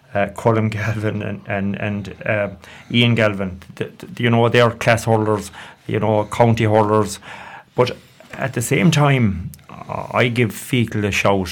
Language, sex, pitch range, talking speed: English, male, 105-115 Hz, 160 wpm